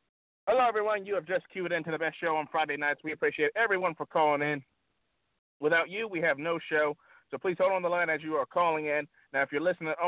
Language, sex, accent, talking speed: English, male, American, 250 wpm